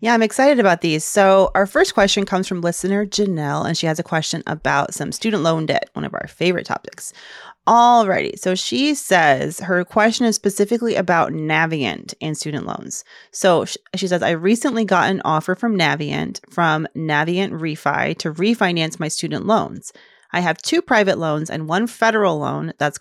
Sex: female